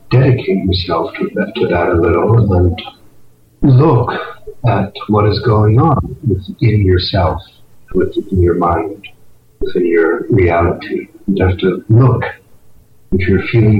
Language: English